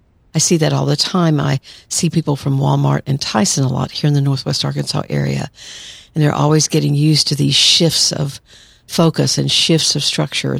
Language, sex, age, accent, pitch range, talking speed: English, female, 50-69, American, 140-175 Hz, 200 wpm